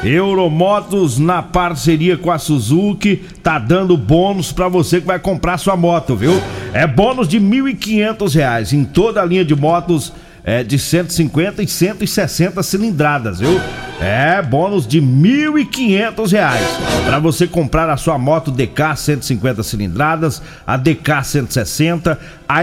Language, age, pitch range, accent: Portuguese, 50-69, 145-185 Hz, Brazilian